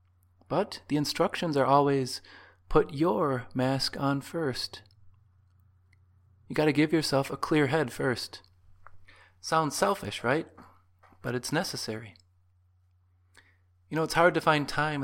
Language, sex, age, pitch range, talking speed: English, male, 30-49, 90-135 Hz, 125 wpm